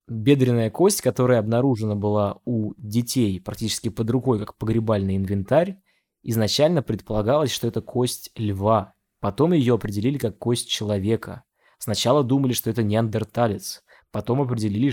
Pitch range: 105-130 Hz